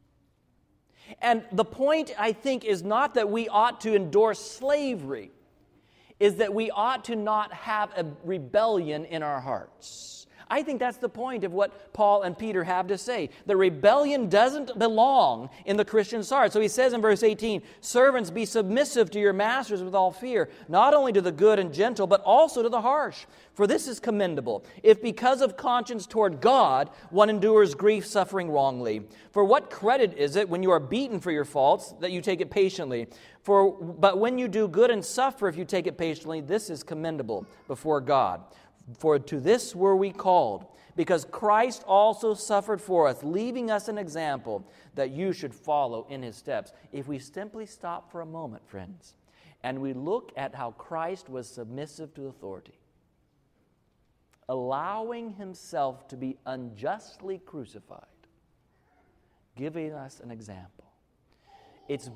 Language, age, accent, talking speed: English, 40-59, American, 170 wpm